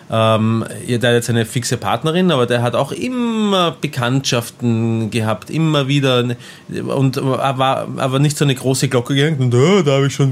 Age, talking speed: 20-39, 185 wpm